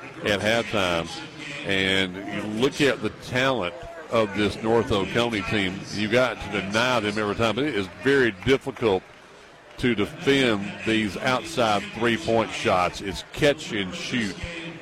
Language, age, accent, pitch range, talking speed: English, 50-69, American, 100-120 Hz, 145 wpm